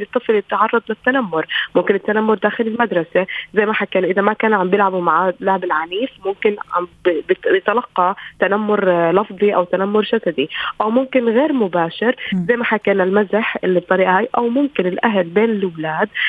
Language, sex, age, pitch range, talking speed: Arabic, female, 20-39, 185-230 Hz, 145 wpm